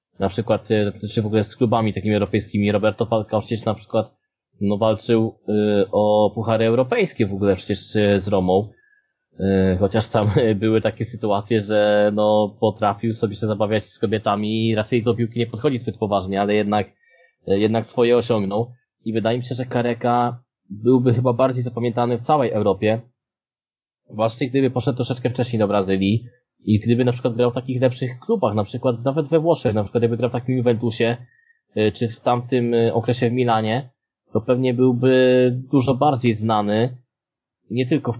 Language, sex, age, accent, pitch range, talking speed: Polish, male, 20-39, native, 105-125 Hz, 175 wpm